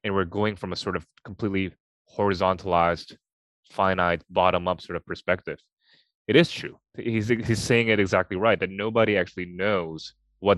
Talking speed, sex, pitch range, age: 165 wpm, male, 90-110 Hz, 20-39